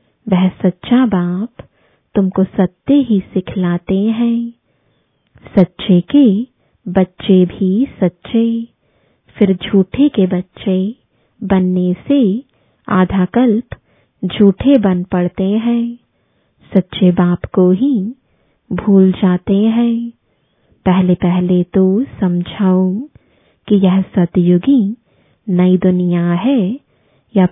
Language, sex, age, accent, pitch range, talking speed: English, female, 20-39, Indian, 185-230 Hz, 90 wpm